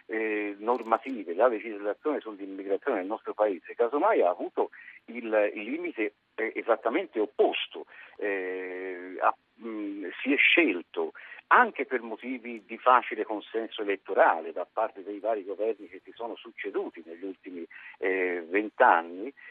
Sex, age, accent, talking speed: male, 50-69, native, 110 wpm